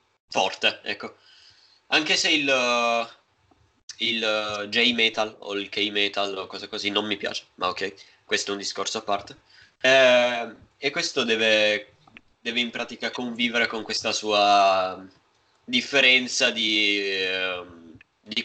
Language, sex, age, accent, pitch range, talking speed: Italian, male, 20-39, native, 105-125 Hz, 125 wpm